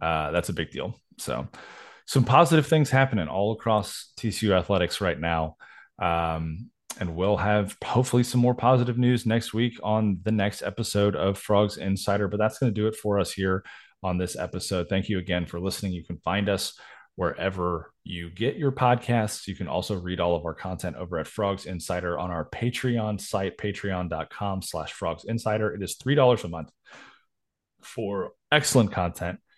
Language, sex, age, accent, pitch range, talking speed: English, male, 20-39, American, 90-110 Hz, 180 wpm